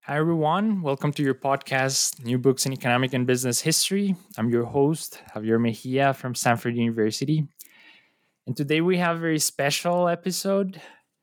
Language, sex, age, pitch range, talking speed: English, male, 20-39, 115-140 Hz, 155 wpm